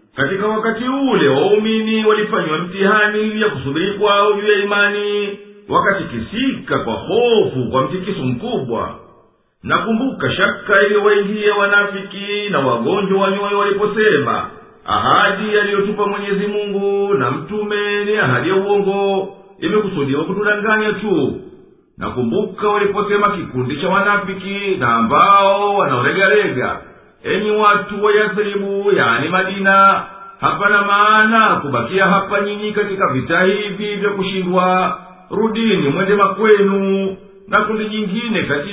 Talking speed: 115 wpm